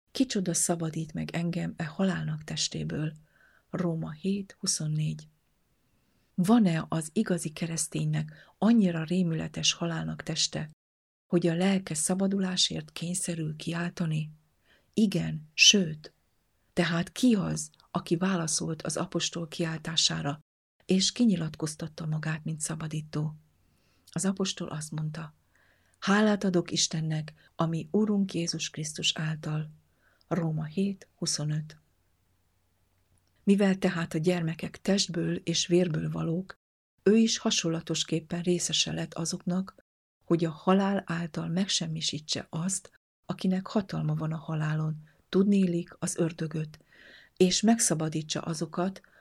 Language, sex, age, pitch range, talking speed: Hungarian, female, 50-69, 155-180 Hz, 100 wpm